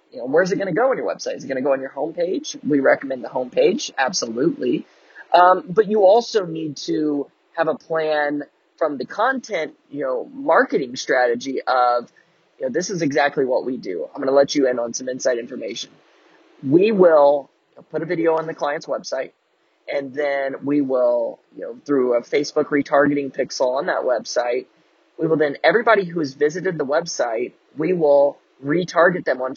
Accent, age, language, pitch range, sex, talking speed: American, 20-39, English, 140-205 Hz, male, 200 wpm